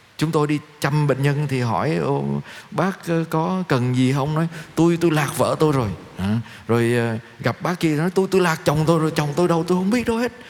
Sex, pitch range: male, 120-165 Hz